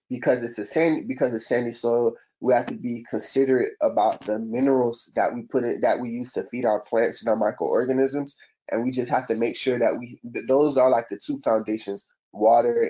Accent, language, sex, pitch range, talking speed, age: American, English, male, 110-130 Hz, 220 wpm, 20-39